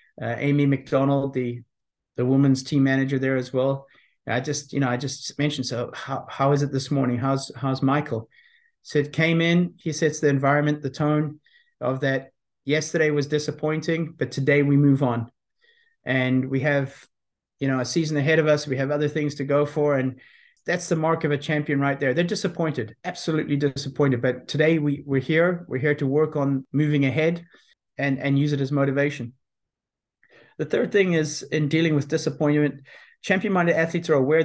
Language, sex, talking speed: English, male, 190 wpm